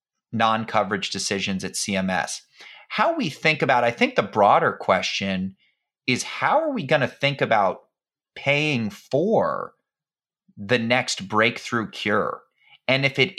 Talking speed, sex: 135 wpm, male